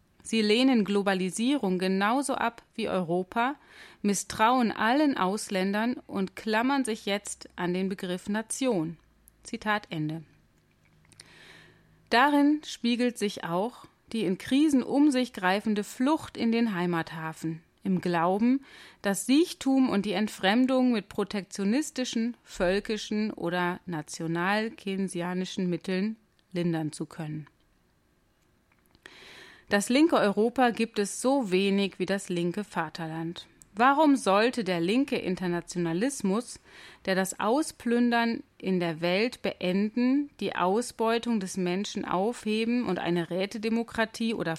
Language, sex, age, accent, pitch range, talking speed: German, female, 30-49, German, 180-235 Hz, 110 wpm